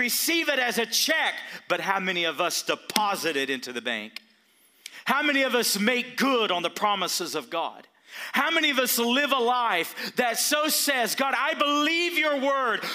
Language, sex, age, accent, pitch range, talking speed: English, male, 40-59, American, 165-265 Hz, 190 wpm